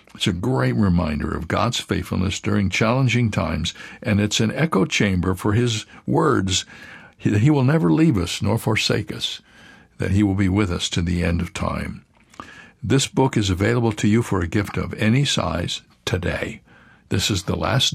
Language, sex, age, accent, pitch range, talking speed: English, male, 60-79, American, 95-110 Hz, 185 wpm